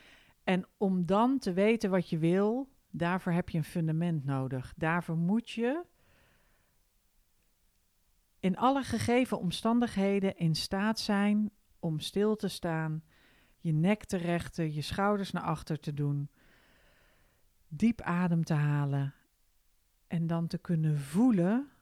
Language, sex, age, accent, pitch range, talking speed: Dutch, female, 40-59, Dutch, 150-205 Hz, 130 wpm